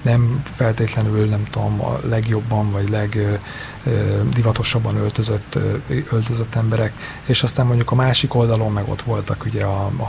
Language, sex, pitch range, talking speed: Hungarian, male, 110-125 Hz, 155 wpm